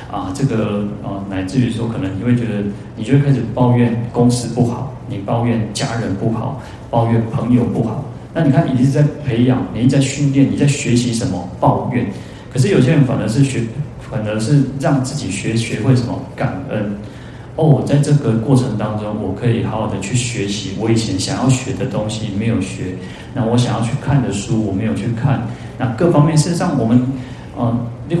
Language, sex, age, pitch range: Chinese, male, 30-49, 110-130 Hz